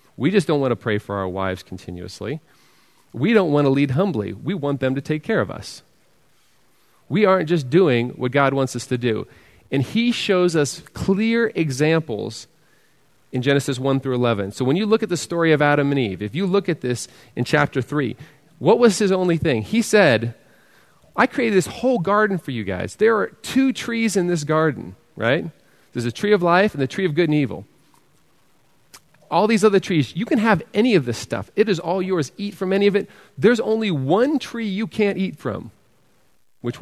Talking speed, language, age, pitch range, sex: 210 wpm, English, 40-59, 135-205 Hz, male